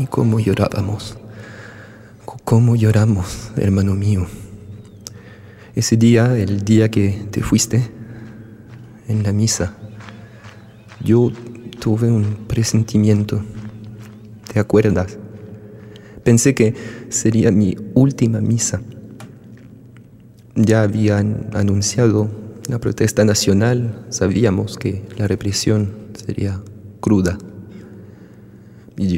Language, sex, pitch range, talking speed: Spanish, male, 105-115 Hz, 85 wpm